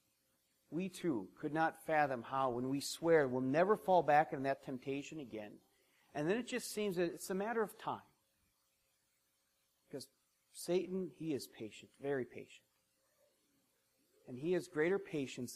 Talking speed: 155 wpm